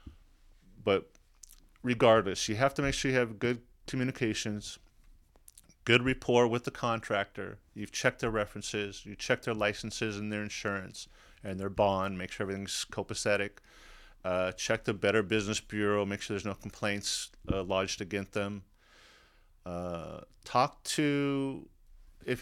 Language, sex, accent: English, male, American